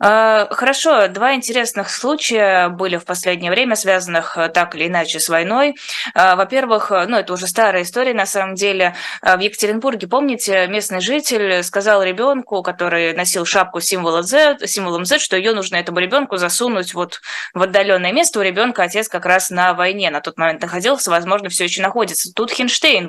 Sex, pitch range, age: female, 175-220 Hz, 20-39